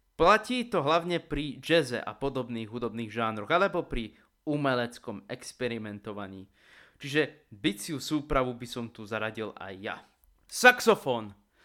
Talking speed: 120 wpm